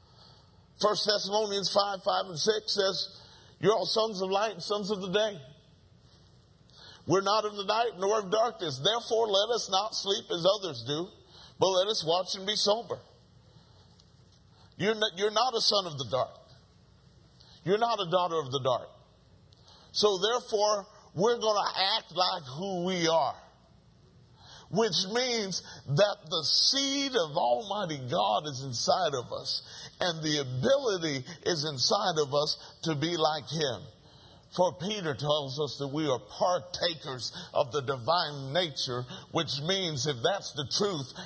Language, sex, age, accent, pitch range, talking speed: English, male, 50-69, American, 145-200 Hz, 155 wpm